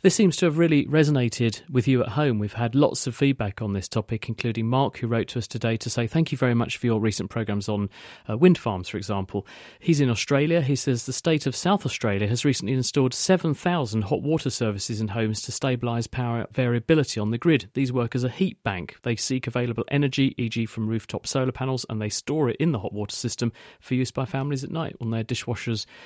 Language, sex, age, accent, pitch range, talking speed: English, male, 40-59, British, 110-135 Hz, 230 wpm